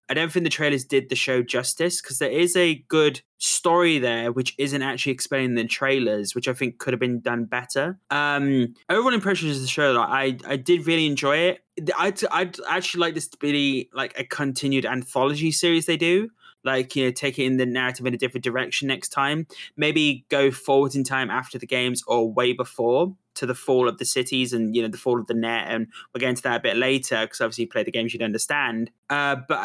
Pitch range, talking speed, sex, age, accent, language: 125-150 Hz, 230 wpm, male, 20-39, British, English